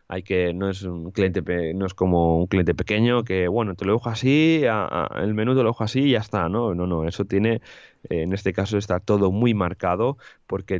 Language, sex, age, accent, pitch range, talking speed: Spanish, male, 20-39, Spanish, 85-105 Hz, 240 wpm